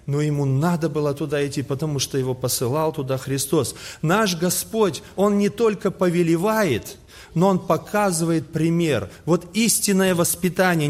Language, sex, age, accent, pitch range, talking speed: Russian, male, 30-49, native, 135-185 Hz, 140 wpm